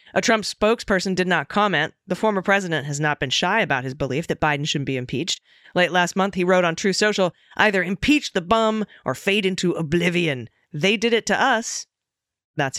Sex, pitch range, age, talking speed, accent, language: female, 150-195 Hz, 40-59, 200 wpm, American, English